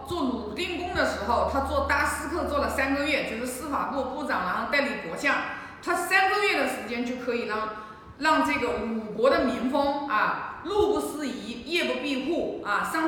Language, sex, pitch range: Chinese, female, 255-315 Hz